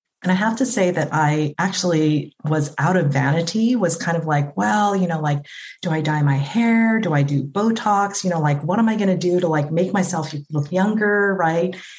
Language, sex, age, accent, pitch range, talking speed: English, female, 30-49, American, 145-185 Hz, 225 wpm